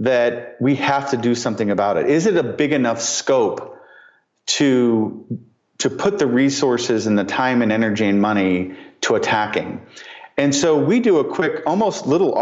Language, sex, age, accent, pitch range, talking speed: English, male, 40-59, American, 100-140 Hz, 175 wpm